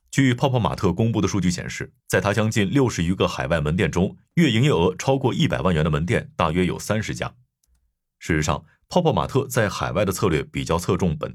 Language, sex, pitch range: Chinese, male, 90-135 Hz